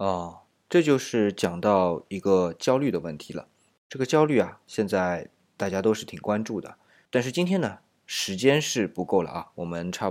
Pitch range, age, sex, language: 90-125 Hz, 20-39, male, Chinese